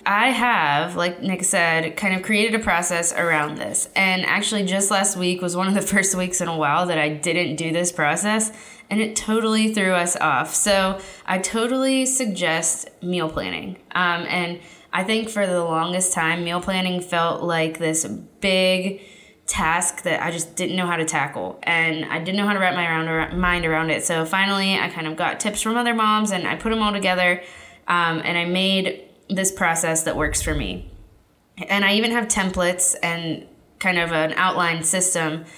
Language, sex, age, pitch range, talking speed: English, female, 20-39, 160-195 Hz, 195 wpm